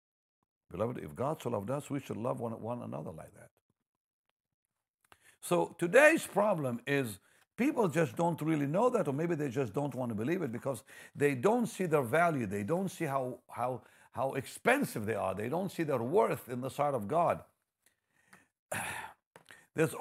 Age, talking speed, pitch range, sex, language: 60-79, 175 wpm, 125-175 Hz, male, English